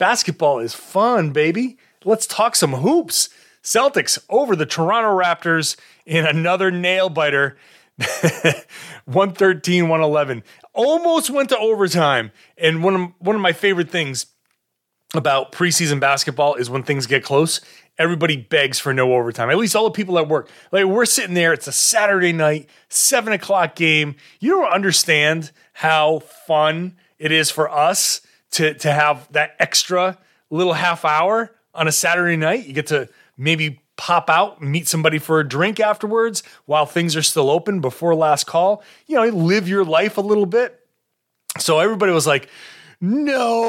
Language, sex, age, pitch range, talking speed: English, male, 30-49, 145-195 Hz, 160 wpm